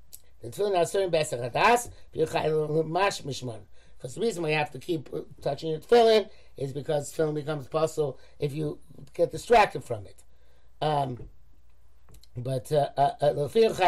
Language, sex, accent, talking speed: English, male, American, 120 wpm